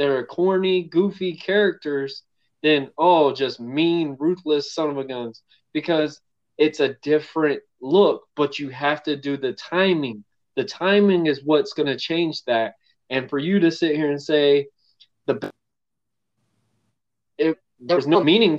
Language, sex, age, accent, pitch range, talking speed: English, male, 20-39, American, 135-160 Hz, 150 wpm